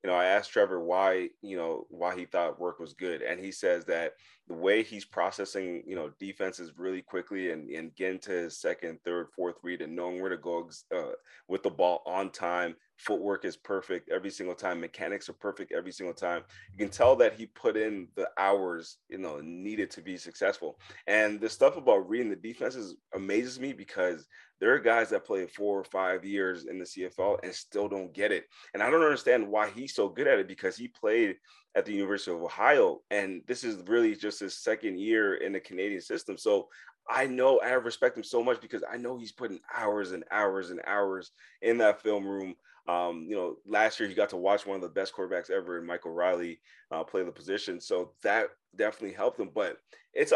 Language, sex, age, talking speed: English, male, 30-49, 215 wpm